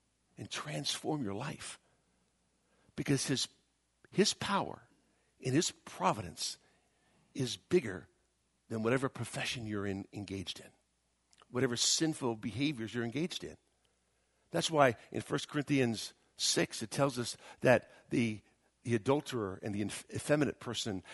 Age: 60-79